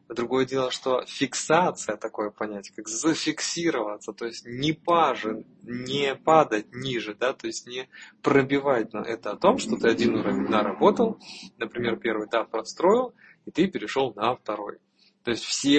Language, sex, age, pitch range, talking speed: Russian, male, 20-39, 110-130 Hz, 155 wpm